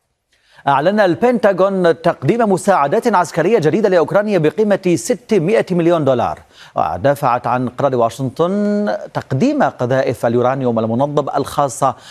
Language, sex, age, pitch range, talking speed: Arabic, male, 40-59, 125-175 Hz, 100 wpm